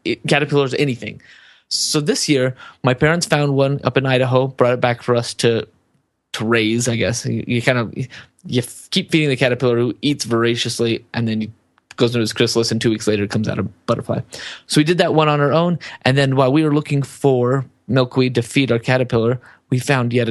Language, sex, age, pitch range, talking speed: English, male, 20-39, 120-140 Hz, 215 wpm